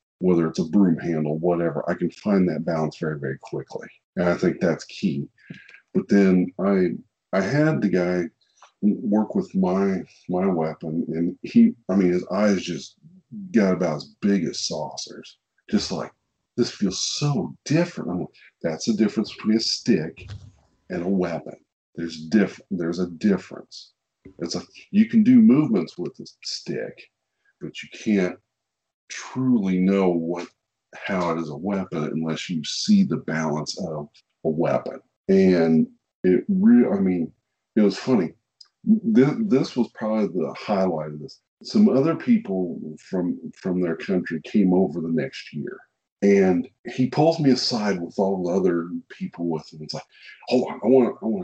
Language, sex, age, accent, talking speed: English, male, 50-69, American, 160 wpm